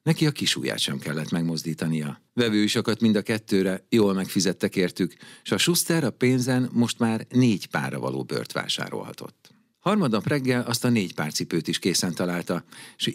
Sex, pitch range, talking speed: male, 95-130 Hz, 170 wpm